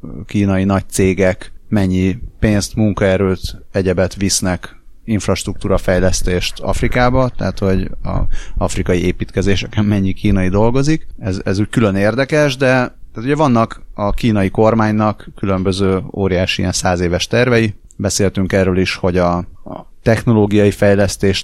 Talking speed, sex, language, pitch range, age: 115 wpm, male, Hungarian, 95-110 Hz, 30-49